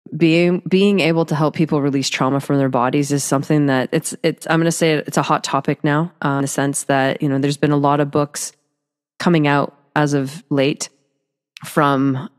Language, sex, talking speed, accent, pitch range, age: English, female, 215 wpm, American, 135-150 Hz, 20-39